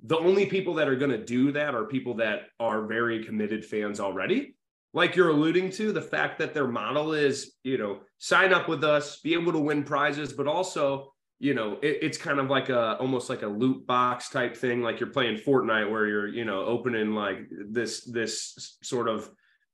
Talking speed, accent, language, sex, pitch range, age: 205 wpm, American, English, male, 115-150 Hz, 30-49